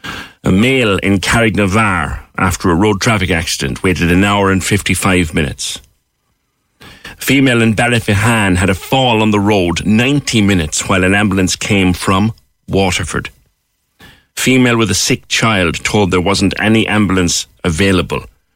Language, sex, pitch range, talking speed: English, male, 90-115 Hz, 145 wpm